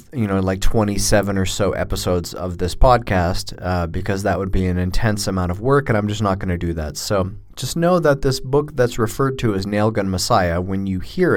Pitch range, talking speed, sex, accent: 95-120 Hz, 225 wpm, male, American